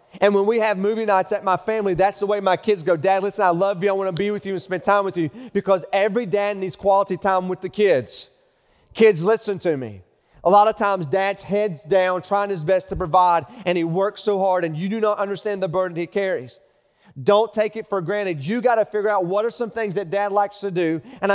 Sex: male